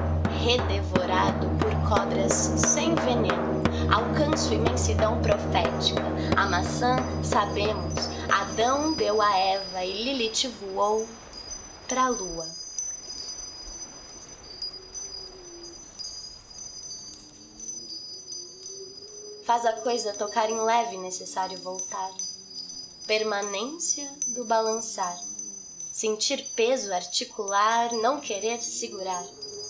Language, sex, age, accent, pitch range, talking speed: Portuguese, female, 20-39, Brazilian, 175-235 Hz, 75 wpm